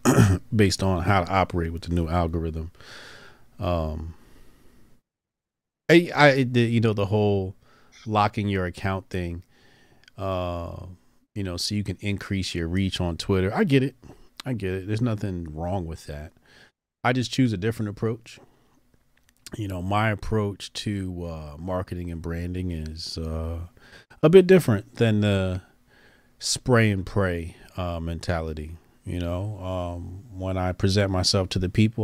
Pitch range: 90-120 Hz